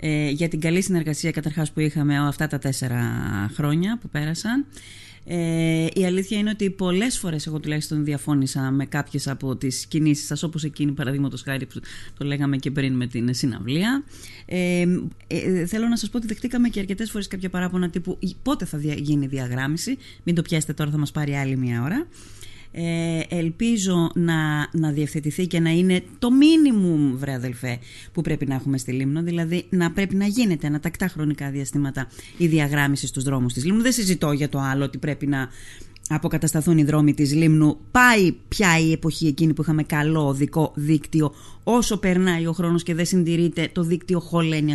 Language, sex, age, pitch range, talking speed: Greek, female, 30-49, 140-180 Hz, 185 wpm